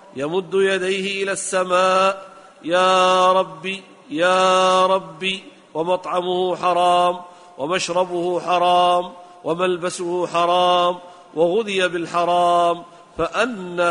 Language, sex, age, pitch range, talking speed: Arabic, male, 50-69, 175-195 Hz, 75 wpm